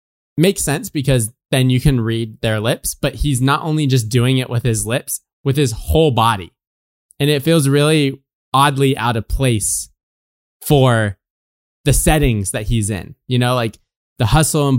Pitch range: 105-140 Hz